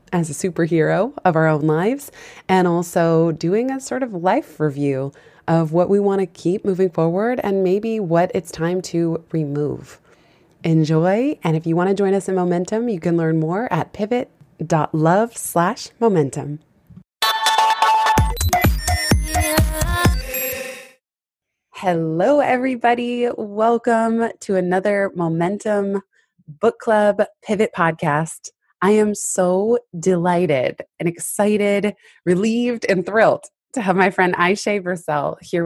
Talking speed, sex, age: 125 wpm, female, 20-39